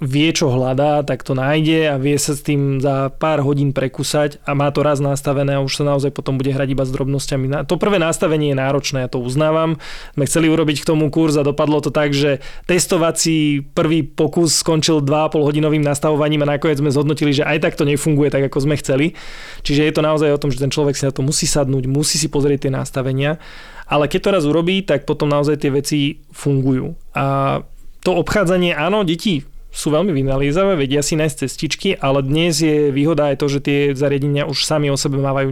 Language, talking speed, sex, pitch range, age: Slovak, 210 wpm, male, 140-155 Hz, 20-39